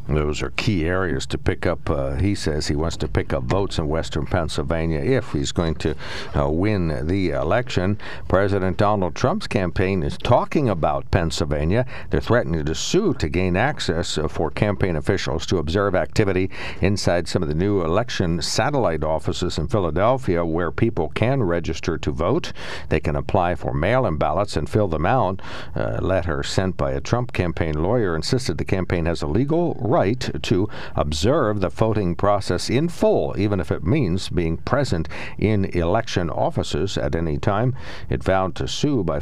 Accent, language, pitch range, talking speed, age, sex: American, English, 80-100 Hz, 175 wpm, 60-79, male